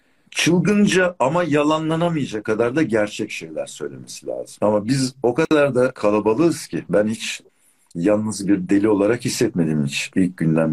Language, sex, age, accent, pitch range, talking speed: Turkish, male, 60-79, native, 85-125 Hz, 140 wpm